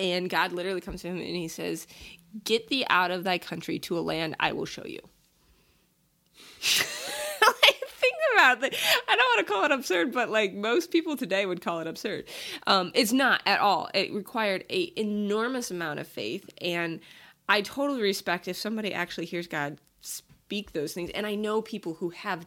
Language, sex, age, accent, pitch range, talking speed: English, female, 20-39, American, 175-255 Hz, 190 wpm